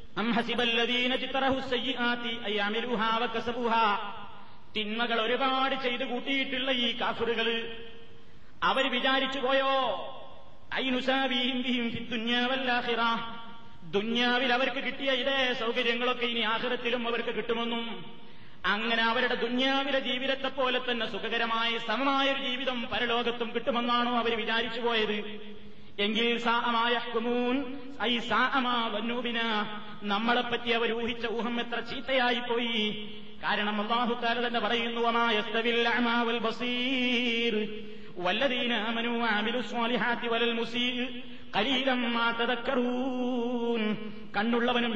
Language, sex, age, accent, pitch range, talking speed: Malayalam, male, 30-49, native, 230-245 Hz, 50 wpm